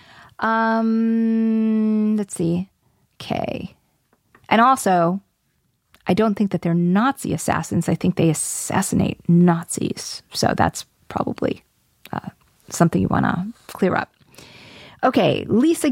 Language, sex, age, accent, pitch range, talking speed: English, female, 40-59, American, 185-225 Hz, 115 wpm